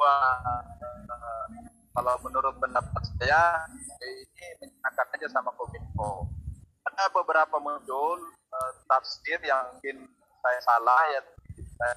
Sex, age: male, 30-49